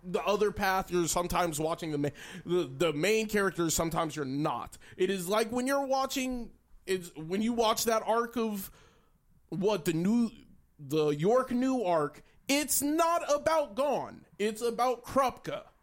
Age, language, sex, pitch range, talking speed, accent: 20-39, English, male, 160-230 Hz, 160 wpm, American